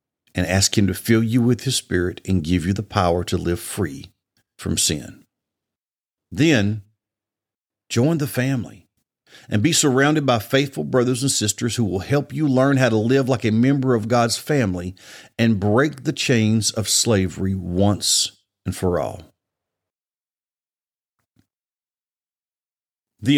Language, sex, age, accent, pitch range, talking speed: English, male, 50-69, American, 105-155 Hz, 145 wpm